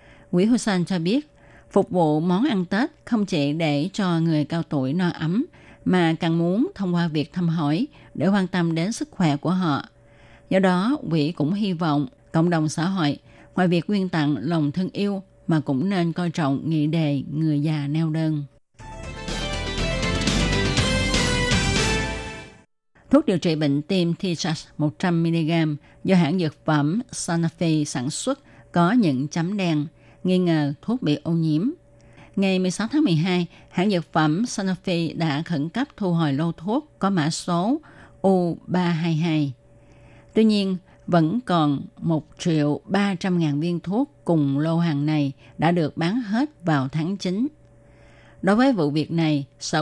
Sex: female